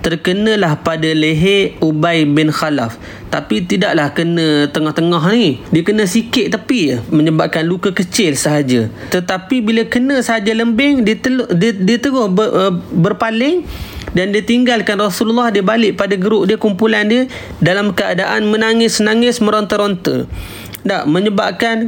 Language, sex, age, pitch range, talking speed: Malay, male, 30-49, 165-215 Hz, 130 wpm